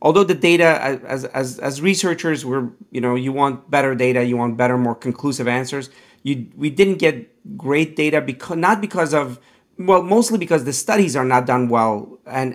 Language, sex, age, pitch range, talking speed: English, male, 40-59, 125-160 Hz, 190 wpm